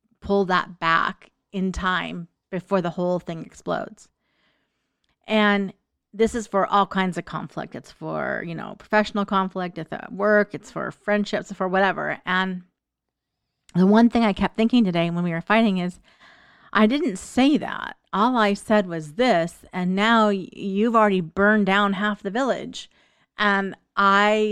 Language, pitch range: English, 180-215 Hz